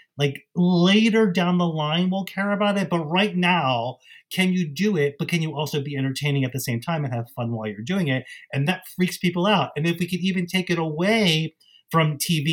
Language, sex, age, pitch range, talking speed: English, male, 30-49, 135-175 Hz, 230 wpm